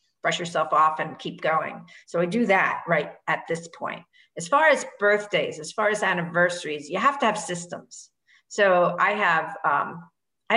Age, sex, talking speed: 50-69, female, 180 wpm